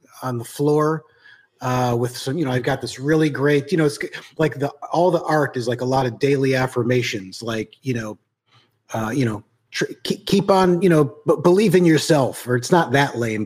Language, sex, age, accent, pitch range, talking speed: English, male, 30-49, American, 120-150 Hz, 210 wpm